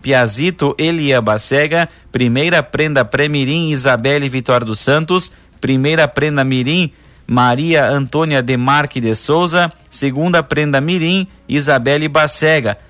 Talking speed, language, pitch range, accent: 110 wpm, Portuguese, 130-160 Hz, Brazilian